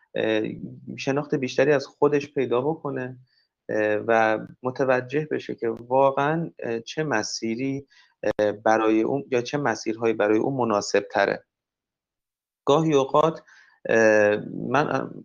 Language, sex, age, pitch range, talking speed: Persian, male, 30-49, 115-145 Hz, 100 wpm